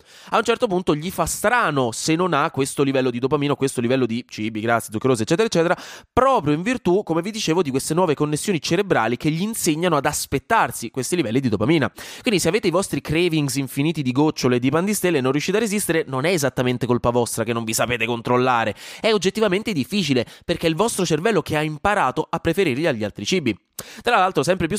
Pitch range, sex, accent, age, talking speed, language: 130-180 Hz, male, native, 20-39, 215 wpm, Italian